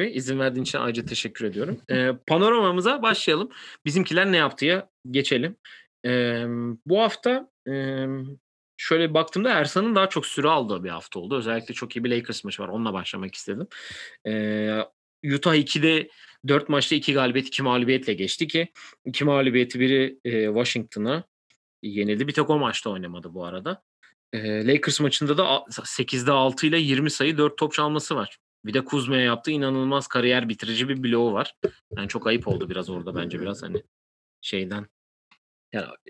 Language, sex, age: Turkish, male, 30-49